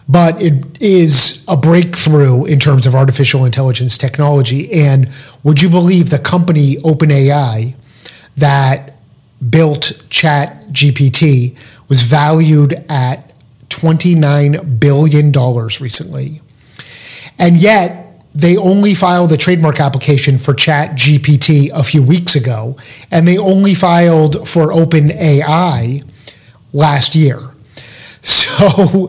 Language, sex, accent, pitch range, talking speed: English, male, American, 135-165 Hz, 105 wpm